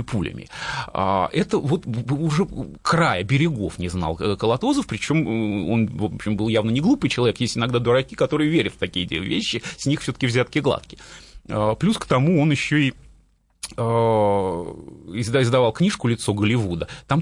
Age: 30-49